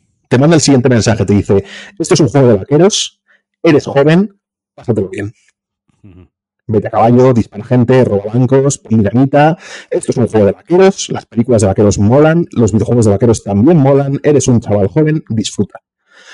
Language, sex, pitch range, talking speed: Spanish, male, 105-150 Hz, 175 wpm